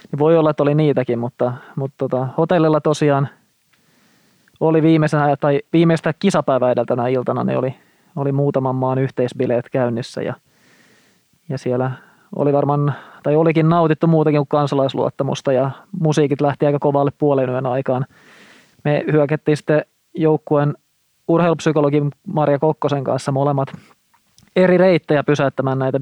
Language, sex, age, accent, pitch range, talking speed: Finnish, male, 20-39, native, 130-150 Hz, 125 wpm